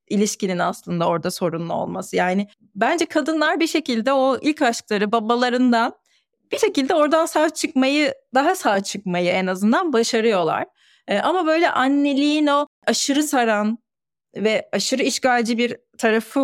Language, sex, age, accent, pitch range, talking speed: Turkish, female, 30-49, native, 195-285 Hz, 130 wpm